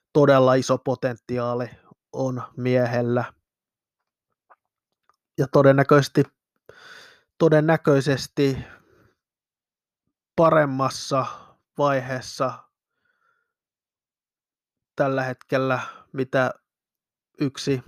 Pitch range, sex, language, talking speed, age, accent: 125-145 Hz, male, Finnish, 45 wpm, 20-39, native